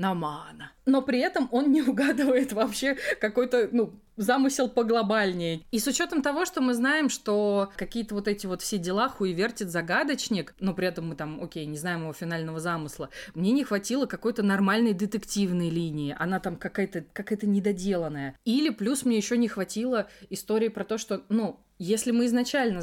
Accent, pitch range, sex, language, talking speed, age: native, 195-250 Hz, female, Russian, 165 wpm, 20-39